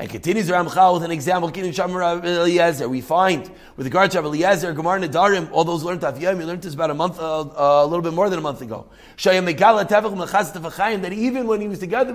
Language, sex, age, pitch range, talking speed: English, male, 30-49, 185-255 Hz, 205 wpm